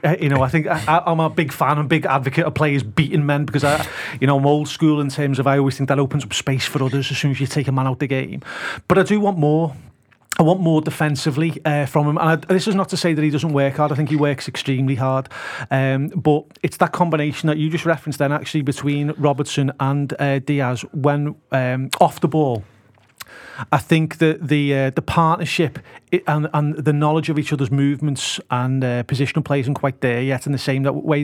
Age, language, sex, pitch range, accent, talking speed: 30-49, English, male, 135-150 Hz, British, 240 wpm